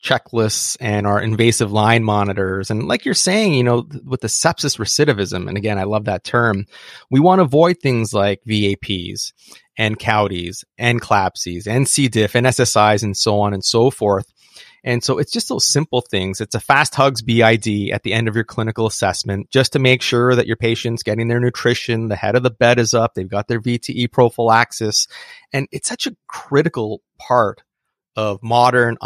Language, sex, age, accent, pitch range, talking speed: English, male, 30-49, American, 110-135 Hz, 190 wpm